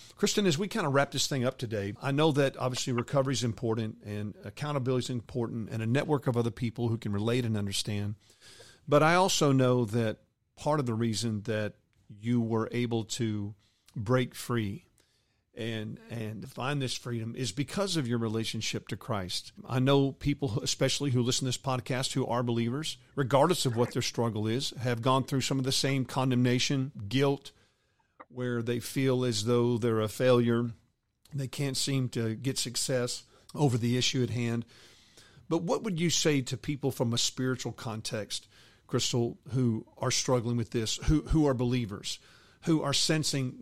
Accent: American